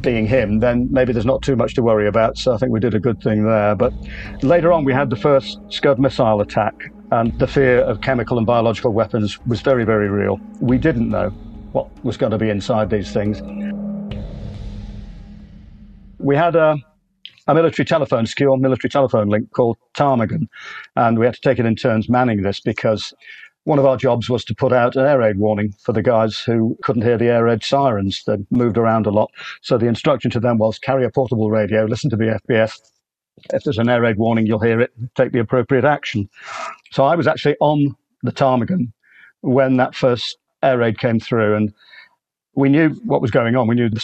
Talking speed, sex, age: 210 wpm, male, 50-69